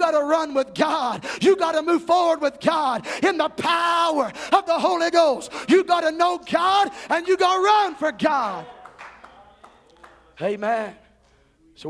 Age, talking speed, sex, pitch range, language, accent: 50-69, 165 wpm, male, 240-300 Hz, English, American